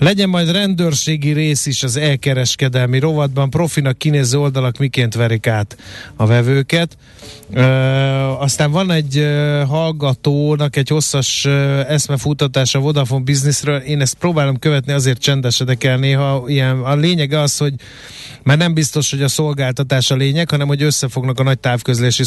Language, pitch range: Hungarian, 125-145 Hz